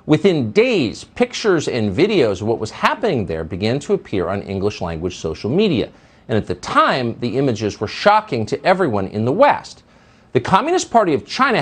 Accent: American